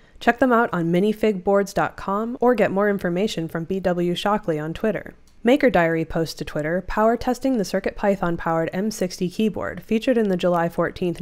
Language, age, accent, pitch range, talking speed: English, 20-39, American, 170-210 Hz, 160 wpm